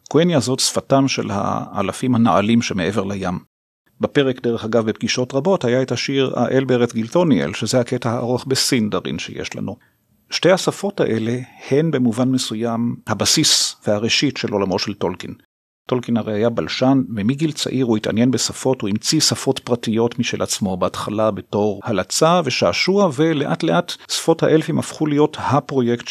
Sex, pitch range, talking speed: male, 115-140 Hz, 145 wpm